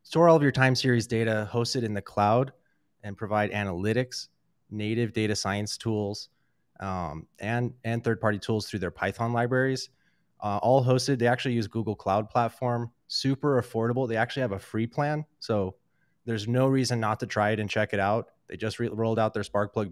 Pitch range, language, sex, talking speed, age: 100-115 Hz, English, male, 185 wpm, 20-39